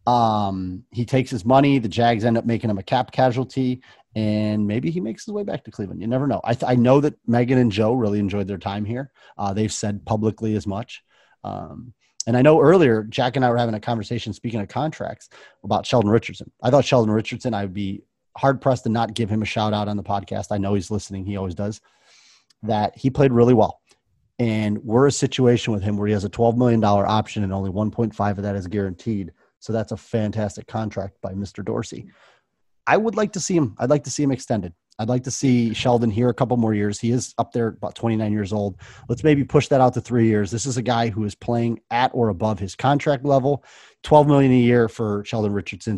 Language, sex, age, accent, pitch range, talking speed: English, male, 30-49, American, 105-125 Hz, 230 wpm